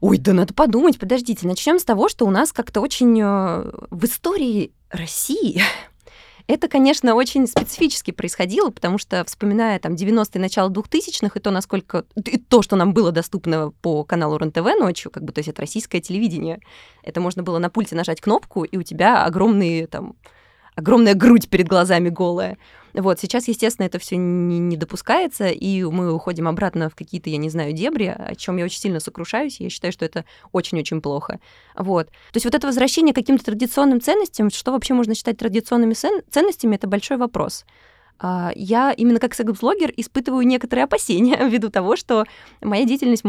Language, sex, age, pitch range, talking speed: Russian, female, 20-39, 180-240 Hz, 175 wpm